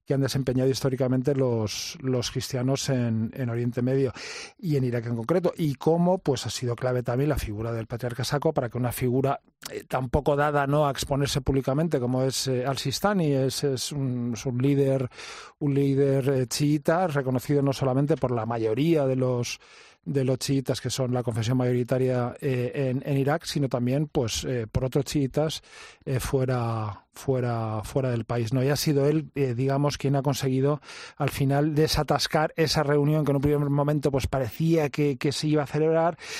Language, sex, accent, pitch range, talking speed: Spanish, male, Spanish, 125-145 Hz, 190 wpm